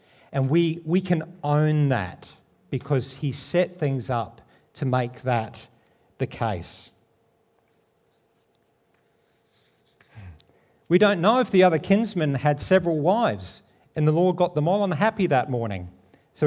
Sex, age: male, 50-69